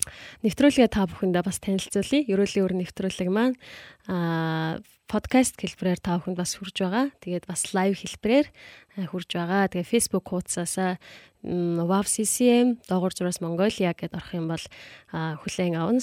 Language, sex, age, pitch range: Korean, female, 20-39, 175-205 Hz